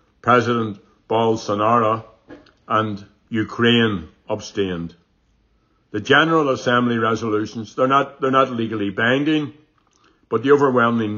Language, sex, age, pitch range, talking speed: English, male, 60-79, 105-120 Hz, 90 wpm